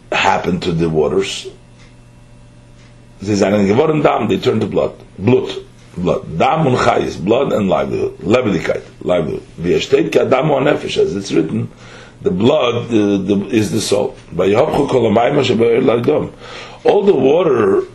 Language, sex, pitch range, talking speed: English, male, 100-155 Hz, 125 wpm